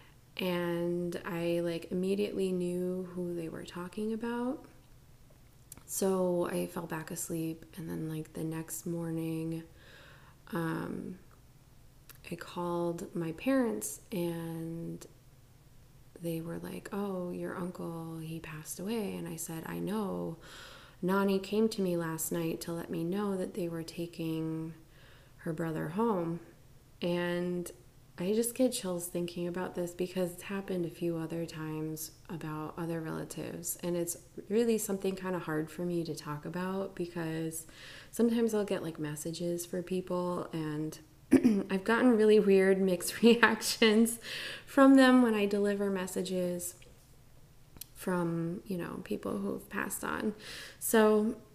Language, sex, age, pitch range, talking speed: English, female, 20-39, 160-190 Hz, 135 wpm